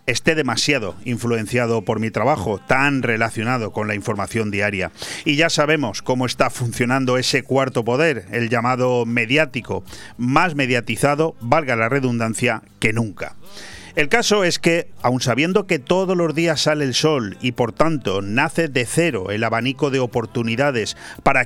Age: 40-59